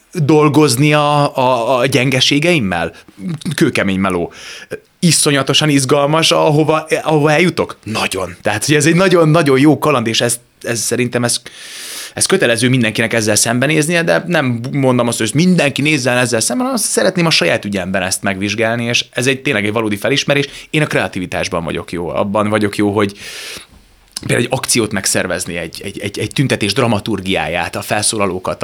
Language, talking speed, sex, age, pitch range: Hungarian, 155 wpm, male, 30-49, 105-145 Hz